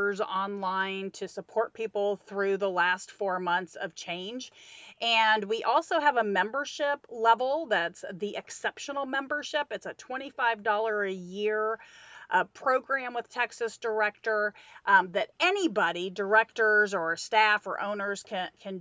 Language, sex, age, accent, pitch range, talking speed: English, female, 40-59, American, 195-245 Hz, 135 wpm